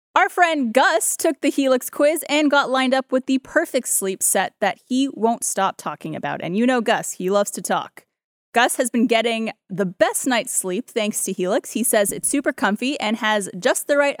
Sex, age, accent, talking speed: female, 20-39, American, 215 wpm